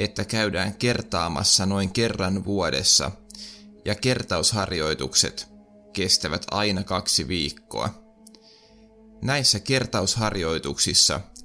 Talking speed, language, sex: 75 wpm, Finnish, male